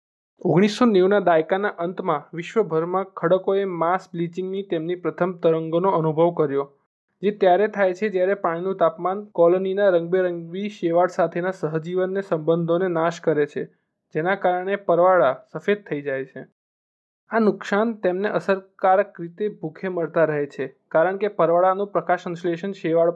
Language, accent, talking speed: Gujarati, native, 120 wpm